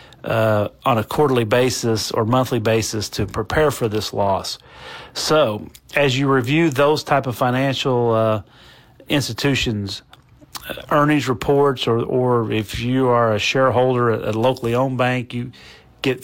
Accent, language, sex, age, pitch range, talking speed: American, English, male, 40-59, 115-140 Hz, 145 wpm